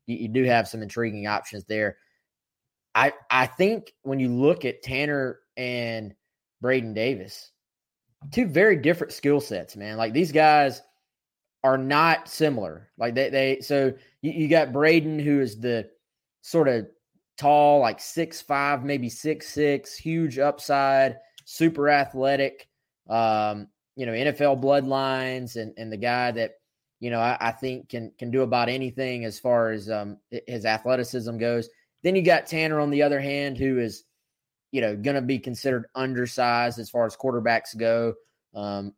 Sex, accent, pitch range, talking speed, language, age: male, American, 115-140 Hz, 160 wpm, English, 20-39